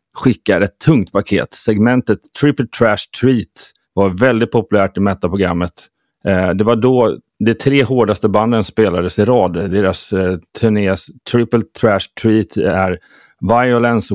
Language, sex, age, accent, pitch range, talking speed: Swedish, male, 30-49, native, 95-115 Hz, 125 wpm